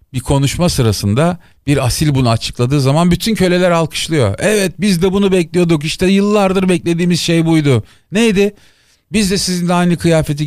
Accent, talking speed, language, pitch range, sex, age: native, 155 wpm, Turkish, 110-165 Hz, male, 40-59